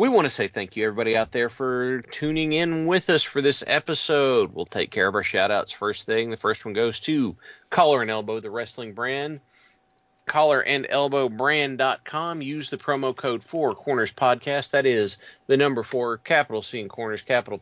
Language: English